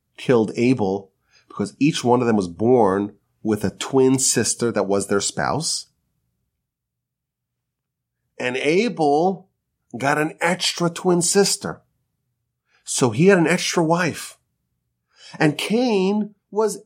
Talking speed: 115 wpm